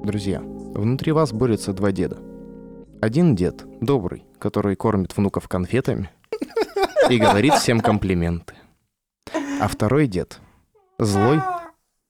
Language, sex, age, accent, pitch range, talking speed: Russian, male, 20-39, native, 100-125 Hz, 105 wpm